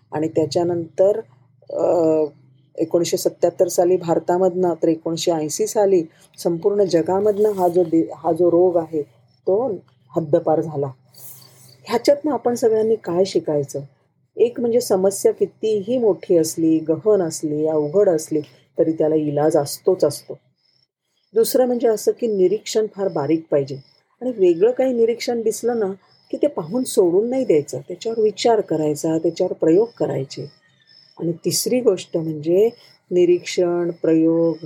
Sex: female